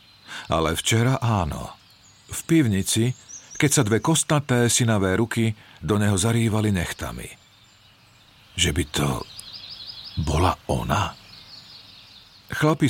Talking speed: 100 wpm